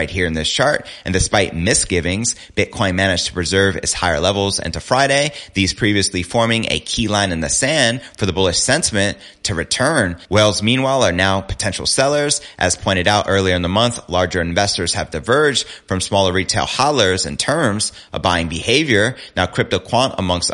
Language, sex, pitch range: English, male, 90-110 Hz